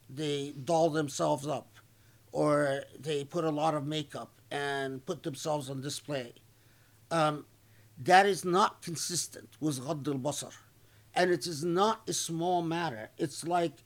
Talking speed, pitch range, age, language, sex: 145 wpm, 120-175 Hz, 50-69, English, male